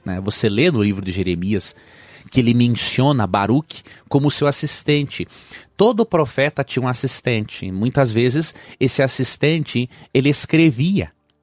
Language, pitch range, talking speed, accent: Portuguese, 100-150 Hz, 125 wpm, Brazilian